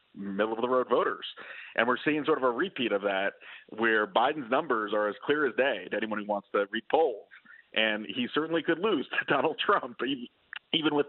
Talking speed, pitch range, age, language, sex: 210 wpm, 105-155 Hz, 40-59, English, male